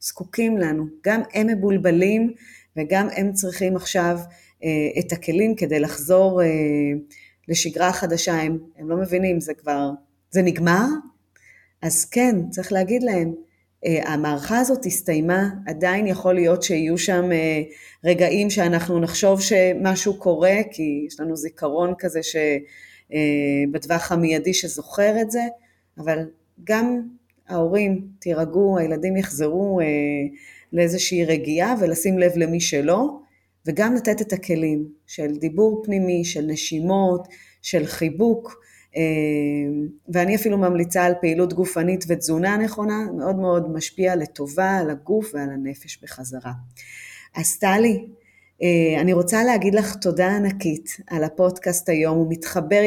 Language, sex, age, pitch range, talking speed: Hebrew, female, 30-49, 160-195 Hz, 125 wpm